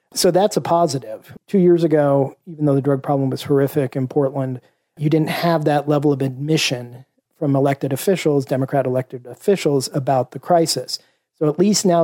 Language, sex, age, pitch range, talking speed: English, male, 40-59, 135-160 Hz, 180 wpm